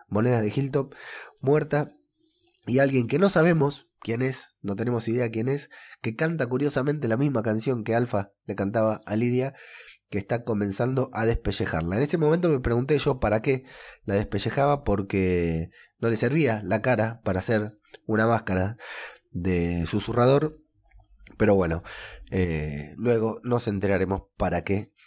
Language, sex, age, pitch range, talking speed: Spanish, male, 20-39, 105-140 Hz, 150 wpm